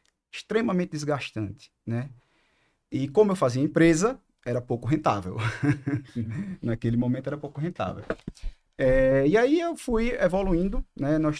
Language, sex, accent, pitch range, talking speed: Portuguese, male, Brazilian, 120-165 Hz, 125 wpm